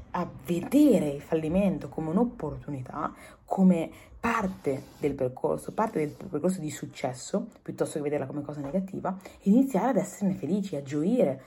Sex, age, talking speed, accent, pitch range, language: female, 30-49, 140 wpm, native, 145-200 Hz, Italian